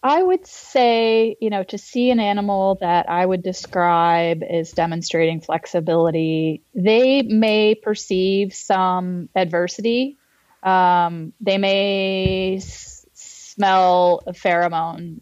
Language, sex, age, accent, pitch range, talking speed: English, female, 30-49, American, 175-215 Hz, 105 wpm